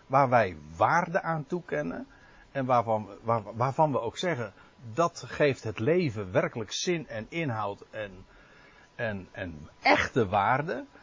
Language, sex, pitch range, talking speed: Dutch, male, 110-170 Hz, 130 wpm